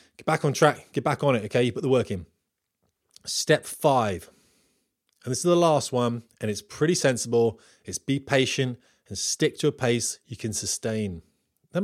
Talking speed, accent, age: 195 wpm, British, 20-39